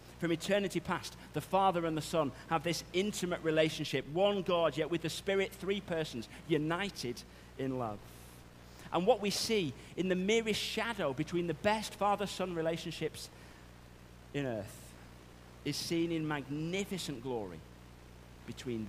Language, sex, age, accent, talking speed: English, male, 40-59, British, 140 wpm